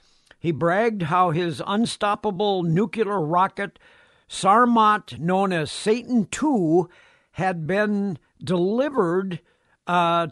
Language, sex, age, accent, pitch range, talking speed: English, male, 60-79, American, 165-215 Hz, 85 wpm